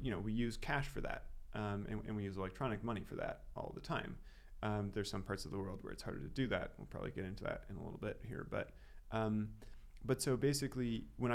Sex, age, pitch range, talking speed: male, 30-49, 100-115 Hz, 255 wpm